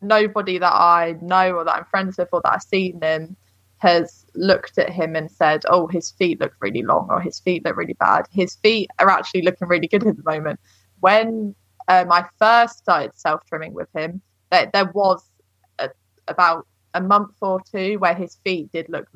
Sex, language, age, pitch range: female, English, 20-39, 165-195 Hz